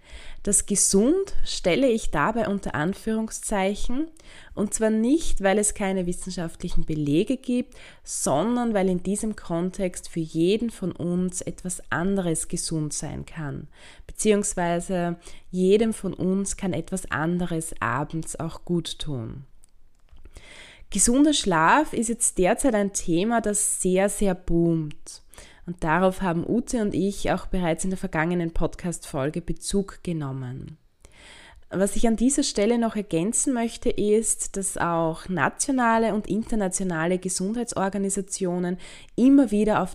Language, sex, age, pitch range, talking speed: German, female, 20-39, 170-210 Hz, 125 wpm